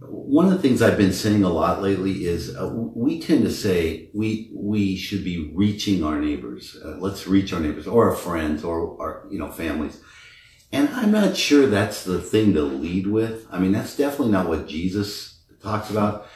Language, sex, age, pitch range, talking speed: English, male, 50-69, 85-115 Hz, 200 wpm